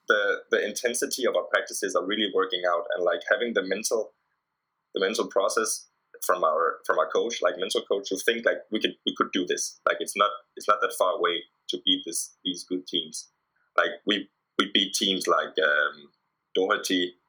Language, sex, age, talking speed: English, male, 20-39, 200 wpm